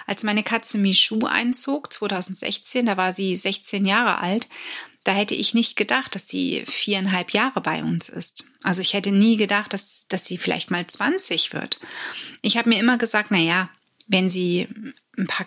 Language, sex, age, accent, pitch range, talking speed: German, female, 30-49, German, 185-220 Hz, 180 wpm